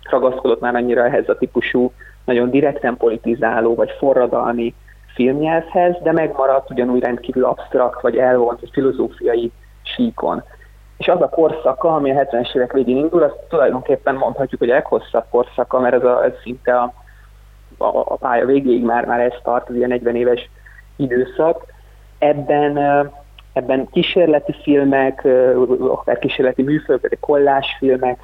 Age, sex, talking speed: 20-39, male, 140 wpm